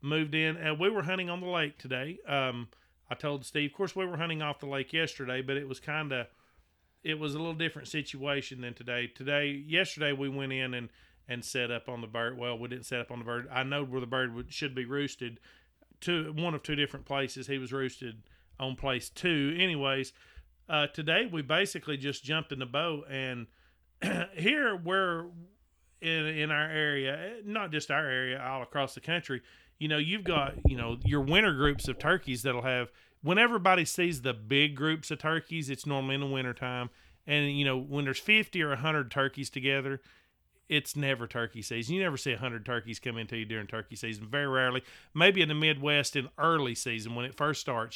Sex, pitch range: male, 125-155 Hz